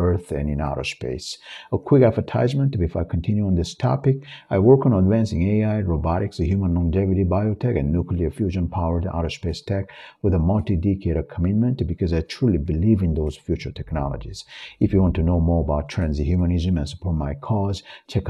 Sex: male